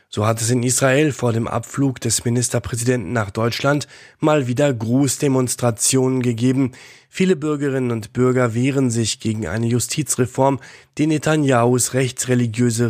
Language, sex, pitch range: German, male, 115-140 Hz